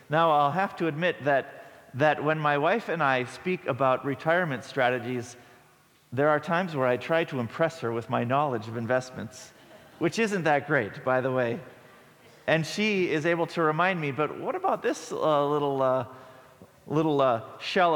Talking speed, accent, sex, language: 180 wpm, American, male, English